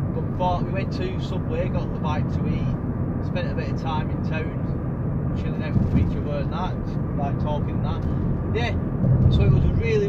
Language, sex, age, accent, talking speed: English, male, 20-39, British, 200 wpm